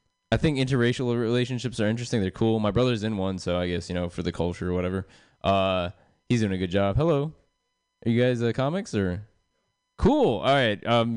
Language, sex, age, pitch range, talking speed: English, male, 20-39, 95-130 Hz, 210 wpm